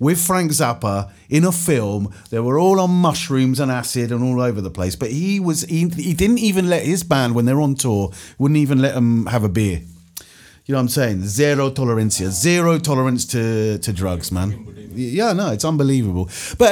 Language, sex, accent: English, male, British